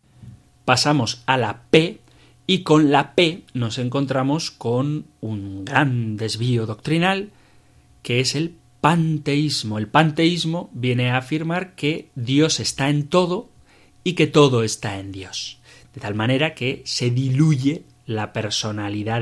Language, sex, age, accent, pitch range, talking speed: Spanish, male, 40-59, Spanish, 115-150 Hz, 135 wpm